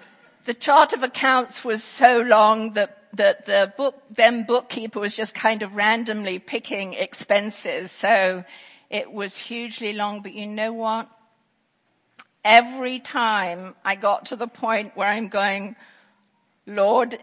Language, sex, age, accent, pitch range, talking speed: English, female, 50-69, British, 205-245 Hz, 140 wpm